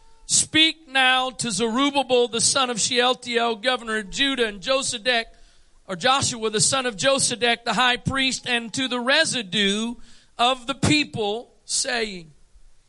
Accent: American